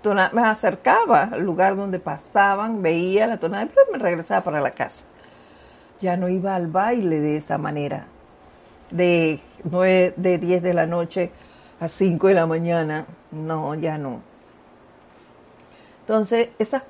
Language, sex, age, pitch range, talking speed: Spanish, female, 50-69, 175-220 Hz, 140 wpm